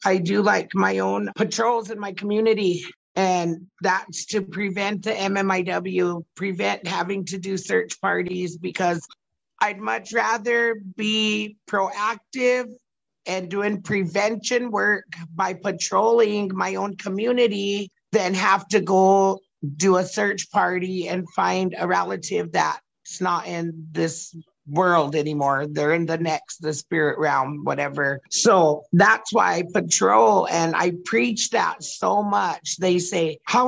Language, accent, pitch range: English, American, 175-220 Hz